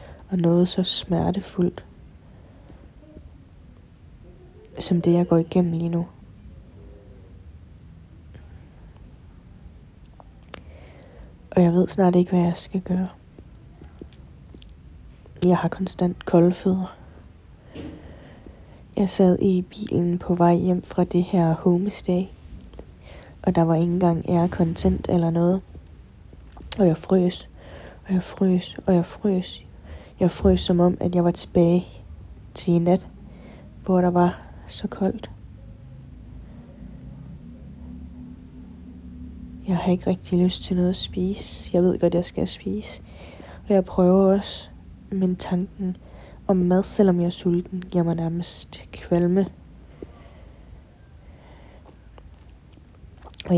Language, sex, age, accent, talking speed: Danish, female, 30-49, native, 115 wpm